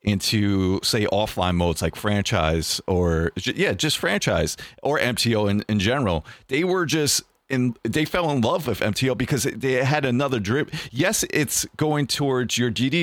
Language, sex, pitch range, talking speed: English, male, 100-130 Hz, 165 wpm